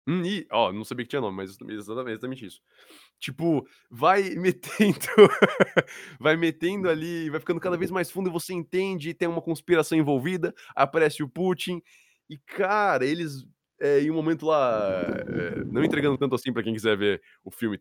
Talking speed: 180 wpm